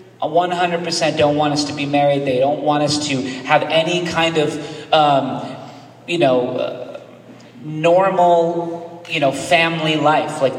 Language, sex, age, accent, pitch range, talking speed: English, male, 40-59, American, 120-155 Hz, 145 wpm